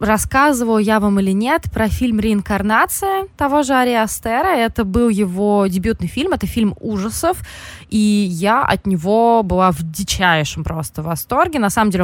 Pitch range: 180-230 Hz